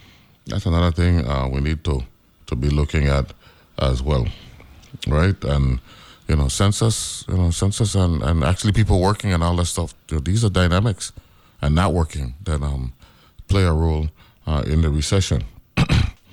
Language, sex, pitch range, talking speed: English, male, 75-95 Hz, 175 wpm